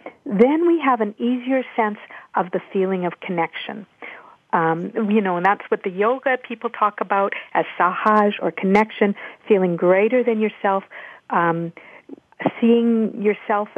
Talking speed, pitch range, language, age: 145 wpm, 195-230 Hz, English, 50-69